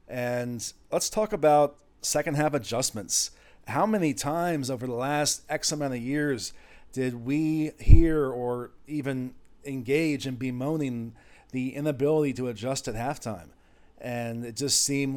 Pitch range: 125-145 Hz